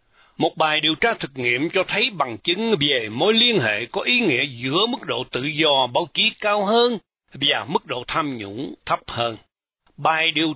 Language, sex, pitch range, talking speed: Vietnamese, male, 140-215 Hz, 200 wpm